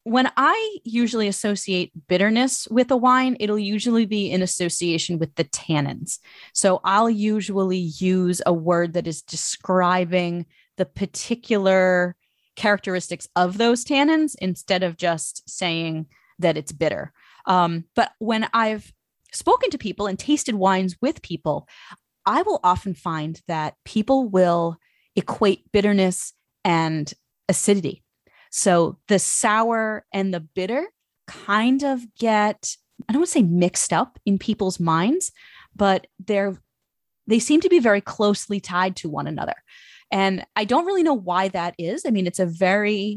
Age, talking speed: 30-49, 145 wpm